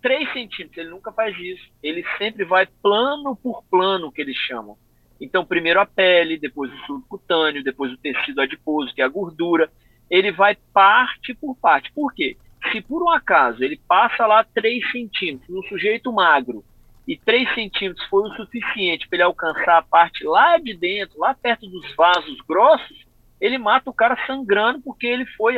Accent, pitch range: Brazilian, 165-255 Hz